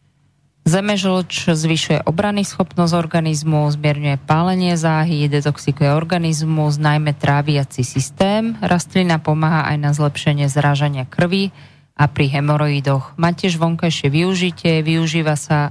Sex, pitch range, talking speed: female, 140-165 Hz, 110 wpm